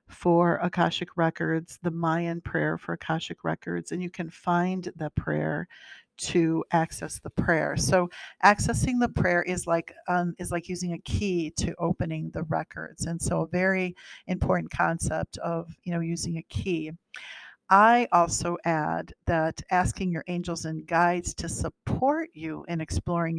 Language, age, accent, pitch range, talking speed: English, 50-69, American, 160-180 Hz, 155 wpm